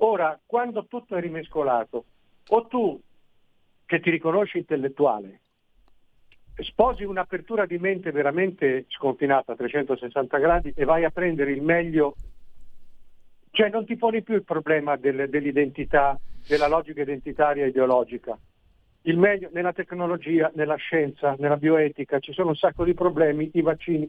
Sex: male